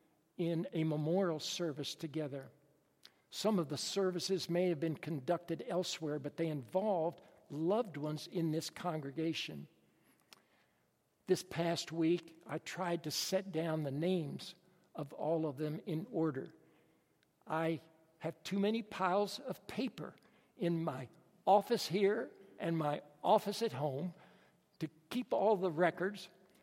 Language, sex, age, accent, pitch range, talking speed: English, male, 60-79, American, 160-190 Hz, 135 wpm